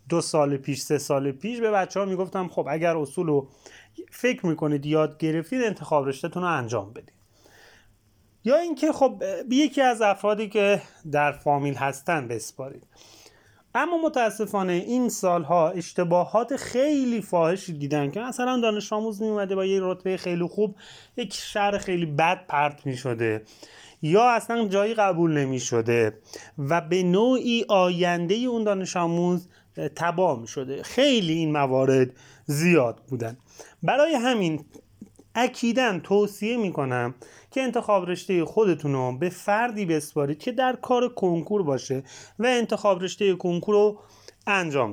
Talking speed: 135 wpm